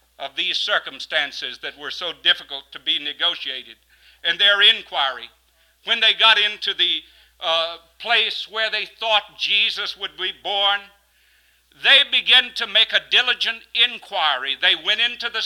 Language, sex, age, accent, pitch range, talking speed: English, male, 60-79, American, 200-235 Hz, 150 wpm